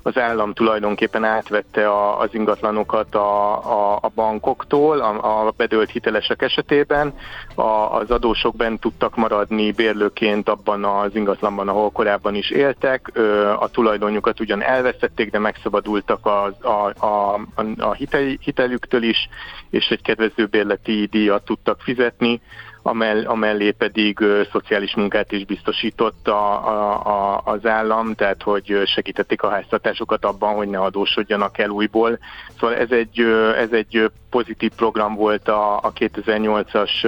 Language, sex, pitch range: Hungarian, male, 100-110 Hz